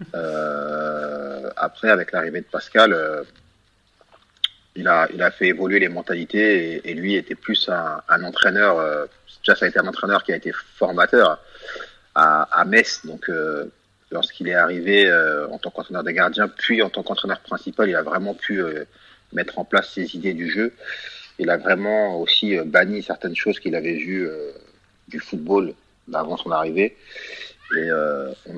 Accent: French